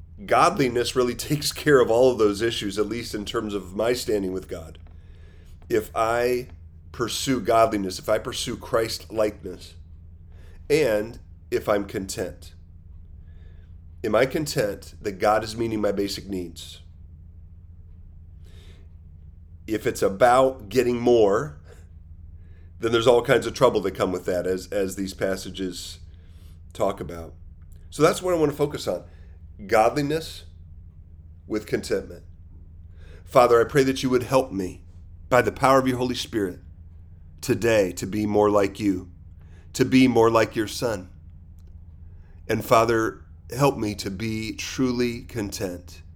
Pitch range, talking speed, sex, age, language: 85-115 Hz, 140 wpm, male, 40-59, English